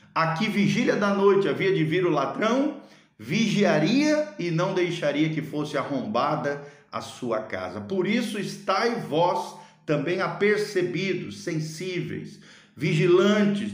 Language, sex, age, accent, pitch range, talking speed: Portuguese, male, 50-69, Brazilian, 140-190 Hz, 120 wpm